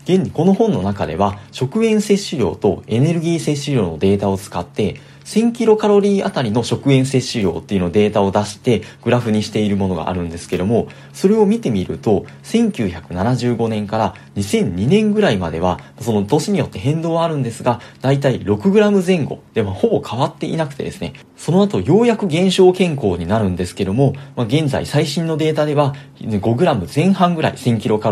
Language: Japanese